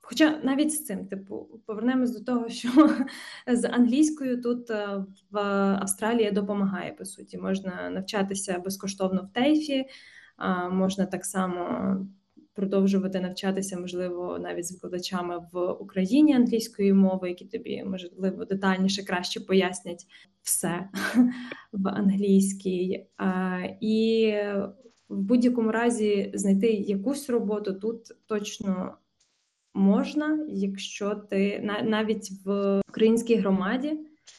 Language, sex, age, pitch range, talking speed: Ukrainian, female, 20-39, 195-235 Hz, 105 wpm